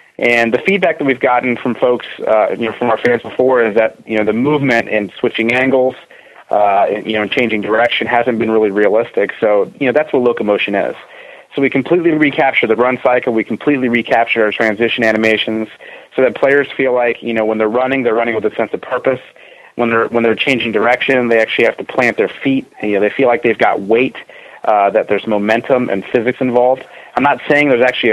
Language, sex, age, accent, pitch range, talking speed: English, male, 30-49, American, 110-135 Hz, 225 wpm